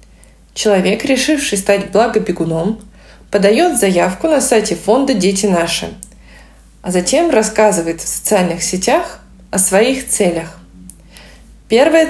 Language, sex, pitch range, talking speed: Russian, female, 185-225 Hz, 105 wpm